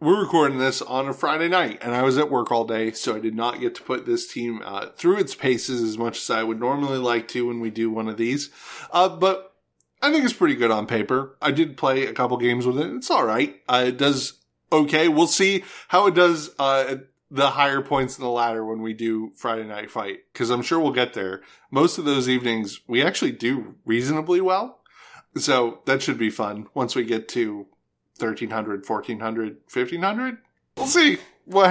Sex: male